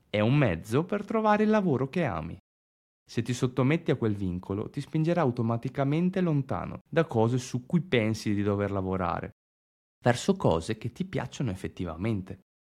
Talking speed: 155 wpm